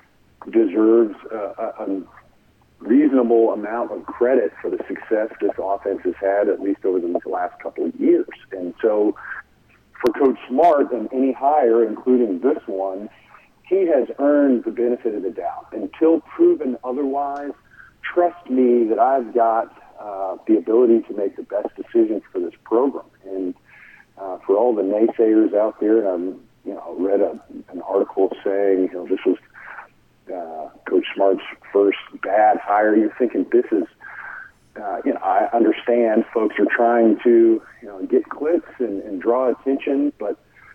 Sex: male